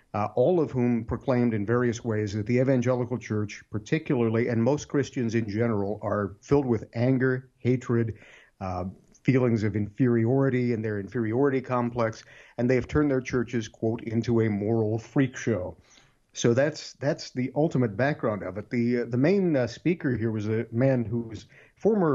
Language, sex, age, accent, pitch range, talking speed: English, male, 50-69, American, 110-130 Hz, 175 wpm